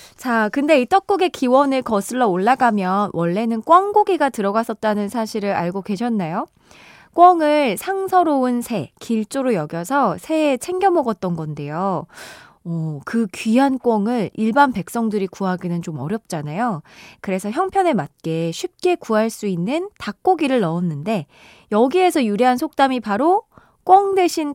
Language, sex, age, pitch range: Korean, female, 20-39, 185-285 Hz